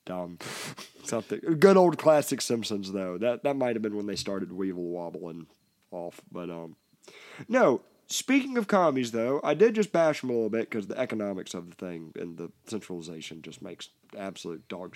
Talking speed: 180 wpm